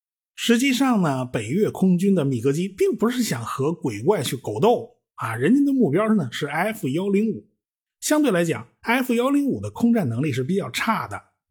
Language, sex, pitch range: Chinese, male, 140-215 Hz